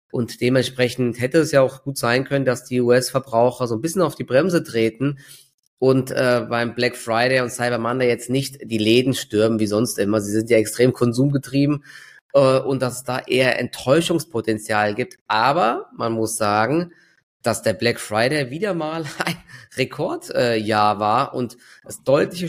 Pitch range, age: 115-140 Hz, 20-39